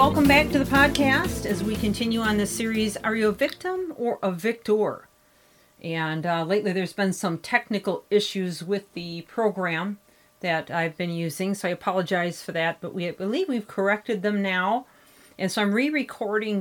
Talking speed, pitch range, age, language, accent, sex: 175 wpm, 180-235 Hz, 40-59, English, American, female